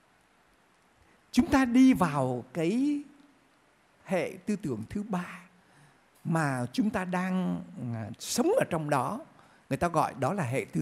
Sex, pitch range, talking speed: male, 150-240 Hz, 140 wpm